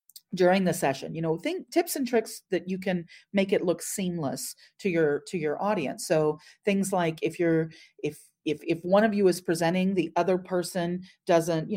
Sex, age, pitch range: female, 40-59, 155-195 Hz